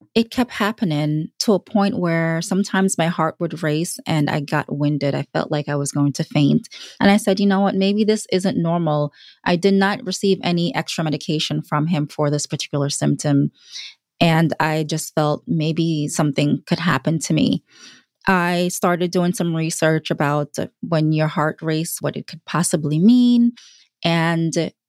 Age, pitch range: 20-39, 150-185 Hz